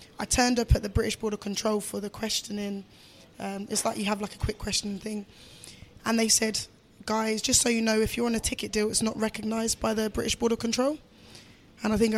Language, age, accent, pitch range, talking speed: English, 10-29, British, 210-235 Hz, 225 wpm